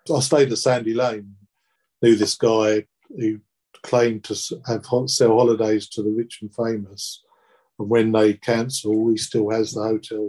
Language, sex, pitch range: English, male, 105-115 Hz